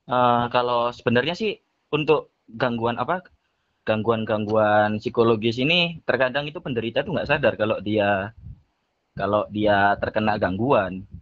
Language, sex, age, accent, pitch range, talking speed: Indonesian, male, 20-39, native, 110-130 Hz, 120 wpm